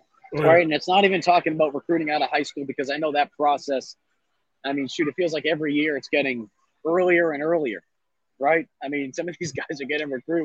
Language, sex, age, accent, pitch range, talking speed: English, male, 30-49, American, 150-185 Hz, 230 wpm